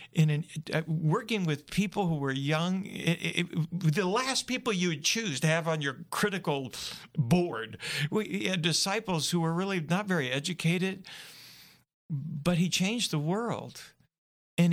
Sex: male